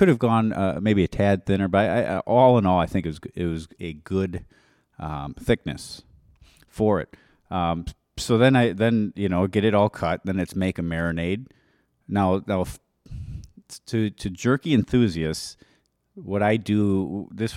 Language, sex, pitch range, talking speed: English, male, 85-110 Hz, 180 wpm